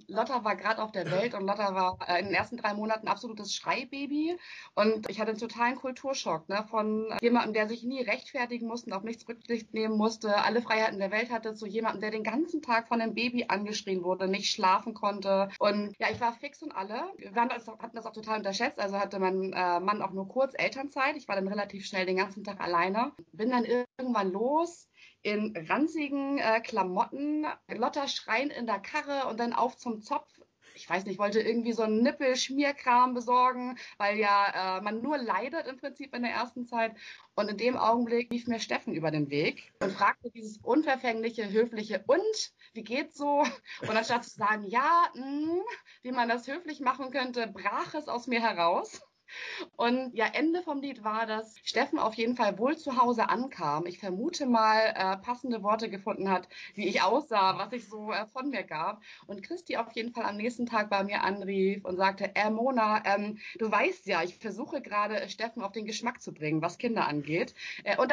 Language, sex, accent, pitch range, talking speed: German, female, German, 205-255 Hz, 200 wpm